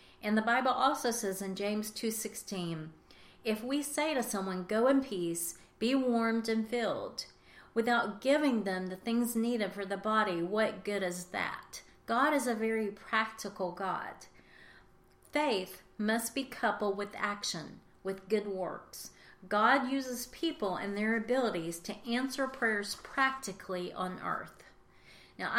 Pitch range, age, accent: 195-245 Hz, 40-59, American